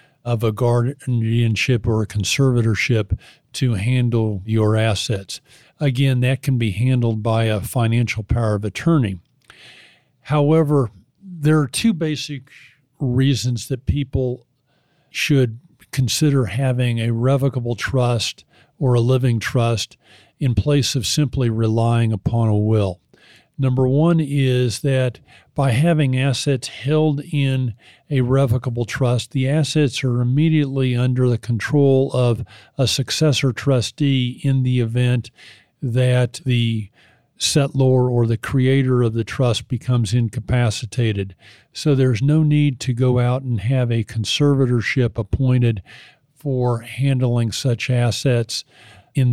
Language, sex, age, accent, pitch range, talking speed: English, male, 50-69, American, 115-135 Hz, 125 wpm